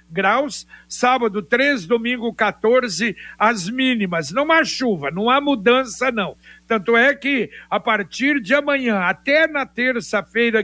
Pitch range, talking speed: 215-265 Hz, 135 wpm